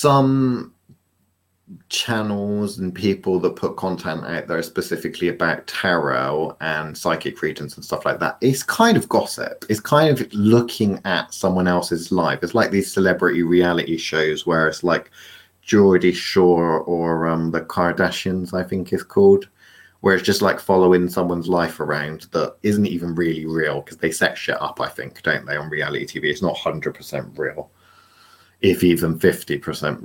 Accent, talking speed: British, 165 wpm